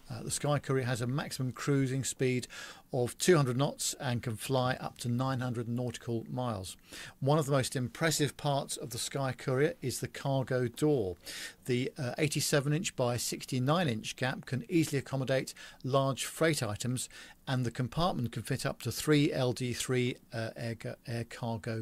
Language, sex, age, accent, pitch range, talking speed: English, male, 50-69, British, 120-145 Hz, 170 wpm